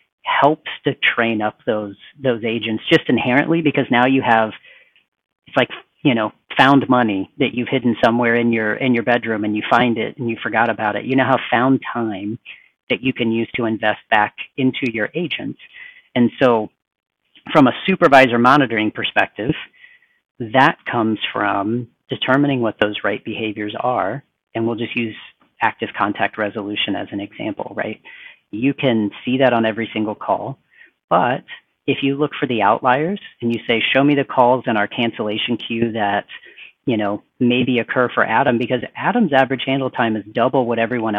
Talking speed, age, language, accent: 175 wpm, 40-59, English, American